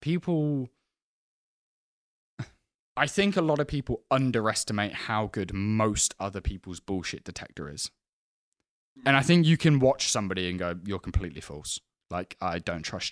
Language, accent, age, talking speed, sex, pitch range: English, British, 10-29, 145 wpm, male, 95-115 Hz